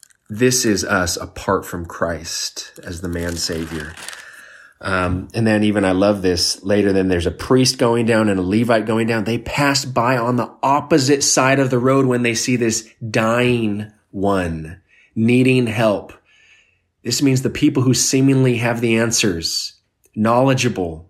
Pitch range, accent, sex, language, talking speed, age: 95-120 Hz, American, male, English, 160 wpm, 30-49